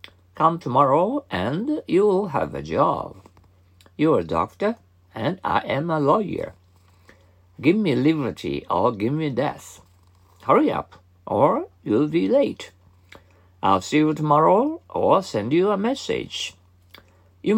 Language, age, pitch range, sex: Japanese, 60-79, 90-130 Hz, male